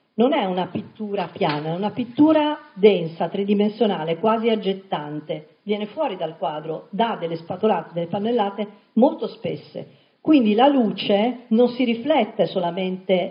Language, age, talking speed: Italian, 50-69, 135 wpm